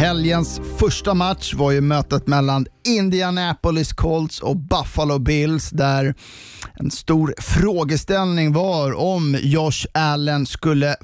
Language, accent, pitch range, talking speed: Swedish, native, 135-160 Hz, 115 wpm